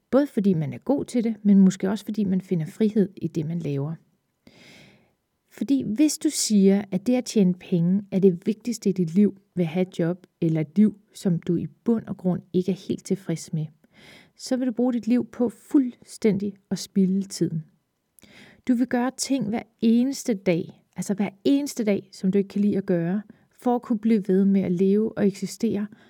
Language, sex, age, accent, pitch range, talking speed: Danish, female, 30-49, native, 185-215 Hz, 210 wpm